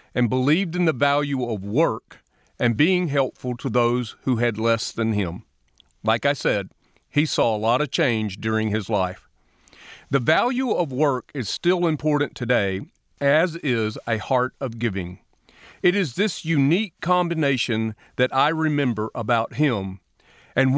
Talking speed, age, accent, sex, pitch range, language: 155 wpm, 40-59, American, male, 120-165 Hz, English